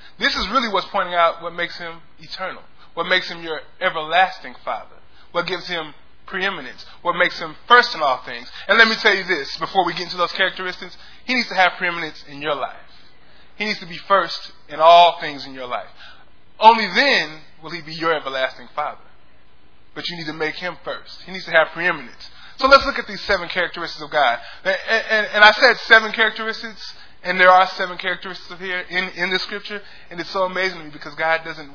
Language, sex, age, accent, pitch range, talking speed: English, male, 20-39, American, 165-200 Hz, 210 wpm